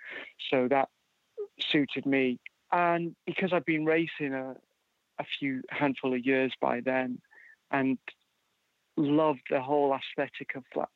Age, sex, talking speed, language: 40-59, male, 130 wpm, English